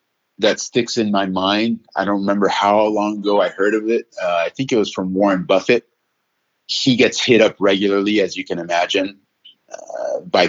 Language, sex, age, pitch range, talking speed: English, male, 30-49, 95-115 Hz, 195 wpm